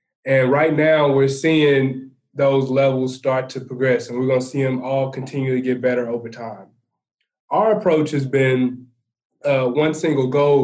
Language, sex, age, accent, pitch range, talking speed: English, male, 20-39, American, 125-140 Hz, 175 wpm